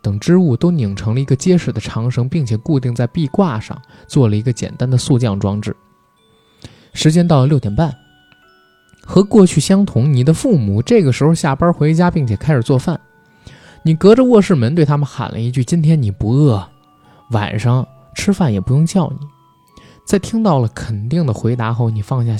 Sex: male